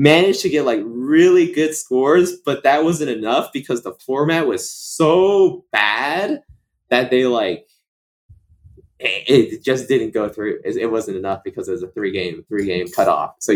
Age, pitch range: 20-39, 125-190 Hz